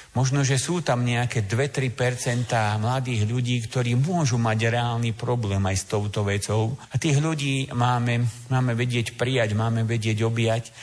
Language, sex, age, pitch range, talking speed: Slovak, male, 50-69, 115-140 Hz, 150 wpm